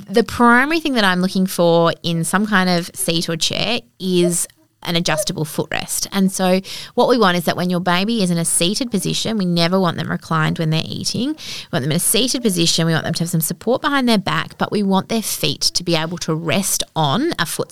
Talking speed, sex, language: 240 wpm, female, English